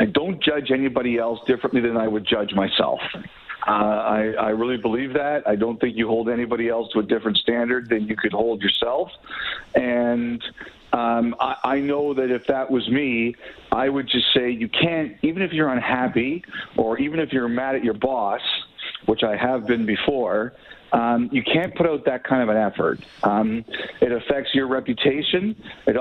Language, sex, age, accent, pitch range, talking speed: English, male, 50-69, American, 115-140 Hz, 190 wpm